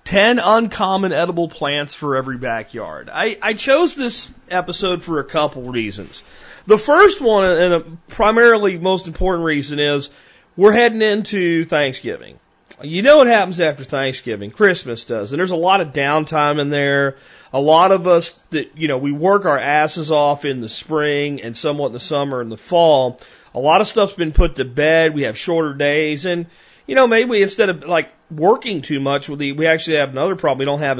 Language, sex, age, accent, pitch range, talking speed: English, male, 40-59, American, 135-180 Hz, 195 wpm